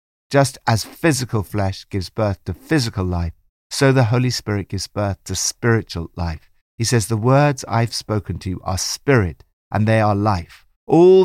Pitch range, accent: 90-130 Hz, British